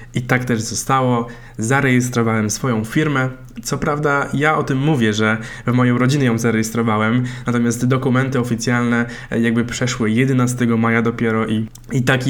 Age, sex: 20-39, male